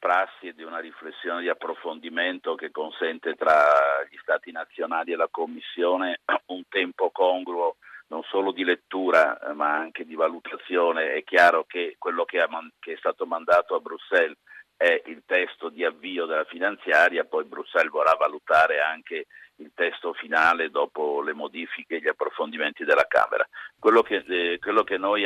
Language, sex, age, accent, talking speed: Italian, male, 50-69, native, 155 wpm